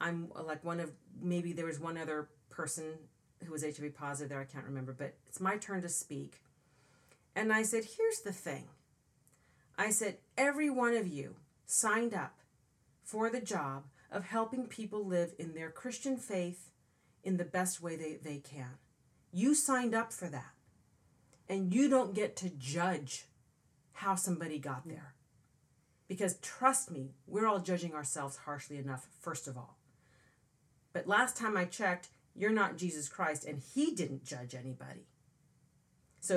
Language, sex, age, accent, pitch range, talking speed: English, female, 40-59, American, 145-215 Hz, 160 wpm